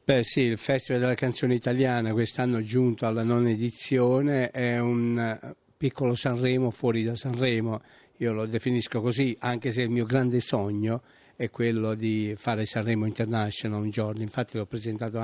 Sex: male